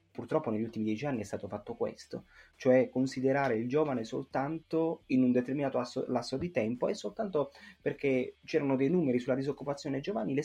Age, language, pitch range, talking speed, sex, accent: 30-49, Italian, 110-140 Hz, 170 wpm, male, native